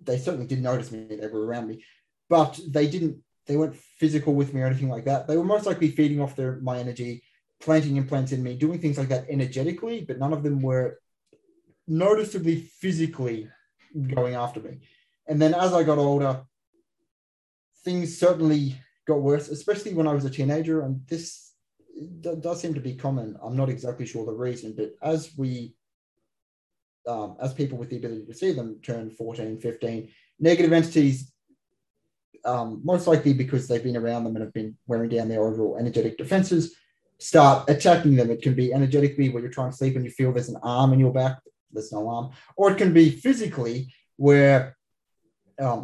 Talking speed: 185 wpm